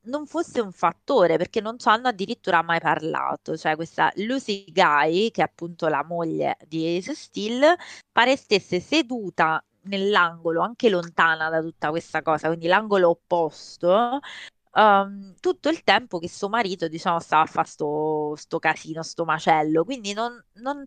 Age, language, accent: 20-39, Italian, native